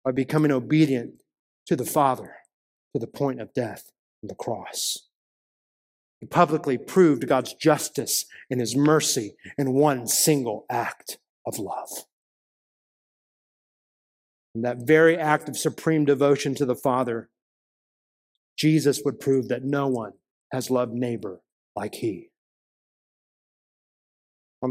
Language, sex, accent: English, male, American